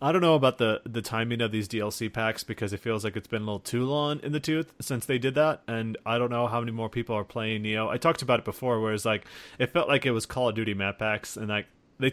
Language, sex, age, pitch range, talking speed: English, male, 30-49, 110-130 Hz, 295 wpm